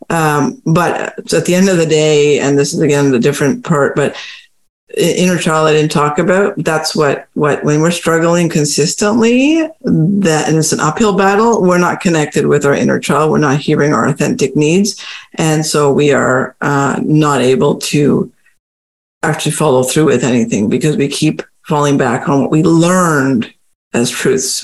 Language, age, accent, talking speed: English, 50-69, American, 175 wpm